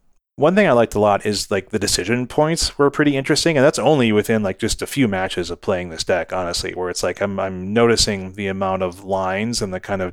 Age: 30-49